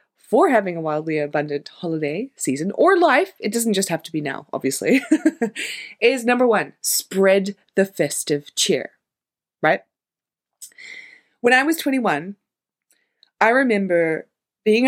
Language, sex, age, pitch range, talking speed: English, female, 20-39, 160-215 Hz, 130 wpm